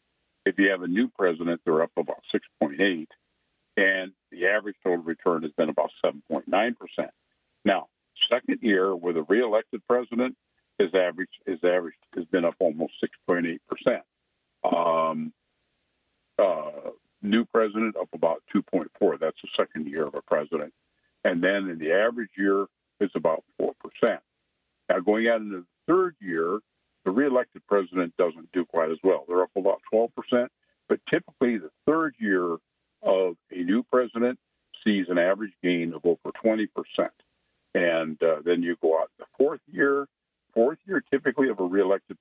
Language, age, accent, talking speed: English, 60-79, American, 155 wpm